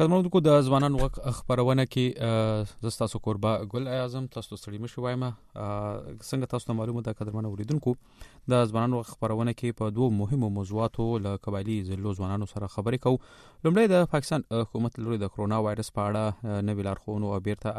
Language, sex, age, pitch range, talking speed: Urdu, male, 30-49, 105-125 Hz, 190 wpm